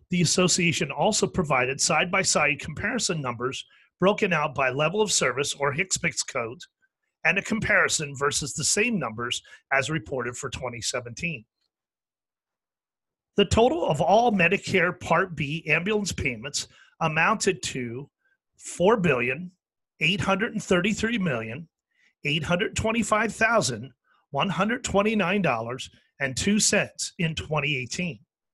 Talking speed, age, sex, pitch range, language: 85 wpm, 40-59, male, 140-200 Hz, English